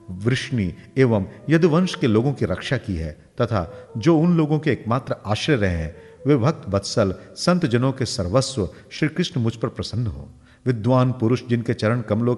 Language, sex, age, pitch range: Hindi, male, 50-69, 100-135 Hz